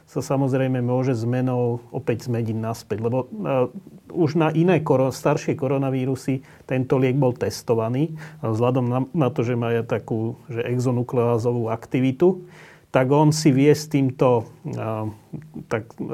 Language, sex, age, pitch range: Slovak, male, 30-49, 115-140 Hz